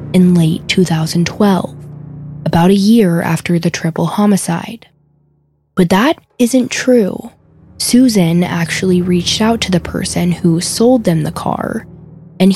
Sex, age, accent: female, 10-29, American